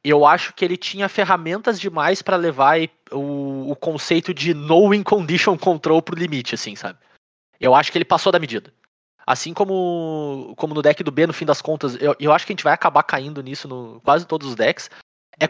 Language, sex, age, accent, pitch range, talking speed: Portuguese, male, 20-39, Brazilian, 140-185 Hz, 210 wpm